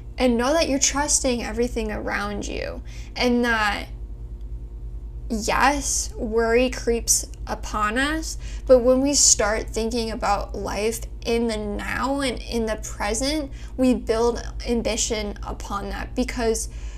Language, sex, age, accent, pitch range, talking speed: English, female, 10-29, American, 195-255 Hz, 125 wpm